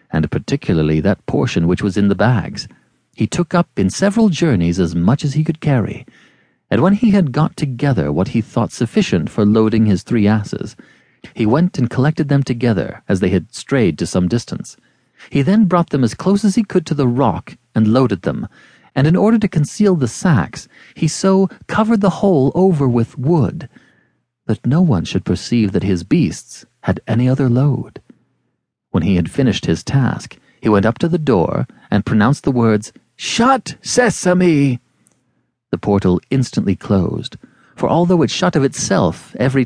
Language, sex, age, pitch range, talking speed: English, male, 40-59, 105-165 Hz, 180 wpm